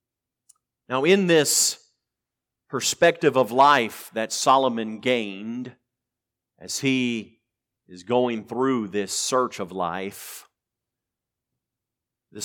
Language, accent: English, American